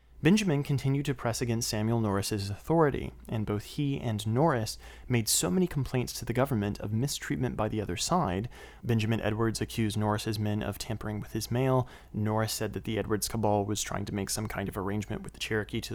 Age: 30-49